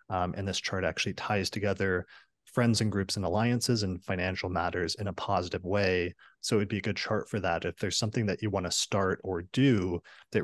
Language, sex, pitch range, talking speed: English, male, 95-110 Hz, 220 wpm